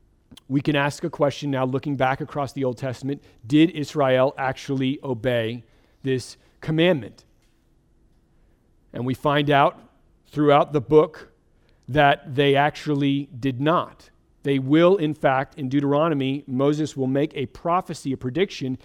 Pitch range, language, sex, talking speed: 125-150 Hz, English, male, 135 wpm